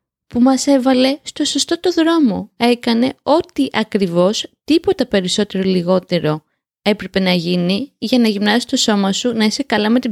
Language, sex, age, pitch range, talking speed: Greek, female, 20-39, 190-240 Hz, 160 wpm